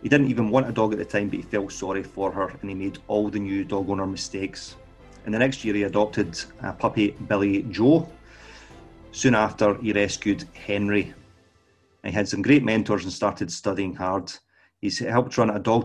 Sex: male